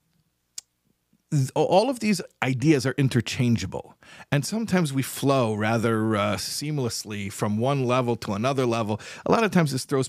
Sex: male